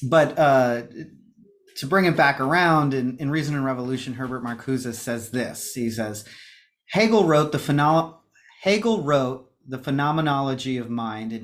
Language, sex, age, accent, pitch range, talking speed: English, male, 30-49, American, 130-165 Hz, 150 wpm